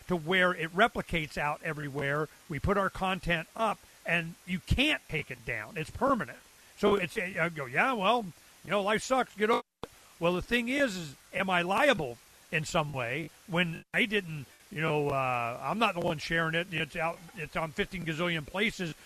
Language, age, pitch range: English, 40-59, 160-230 Hz